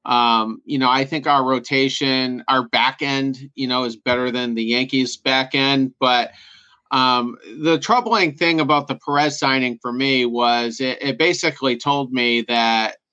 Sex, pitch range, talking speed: male, 120-140 Hz, 170 wpm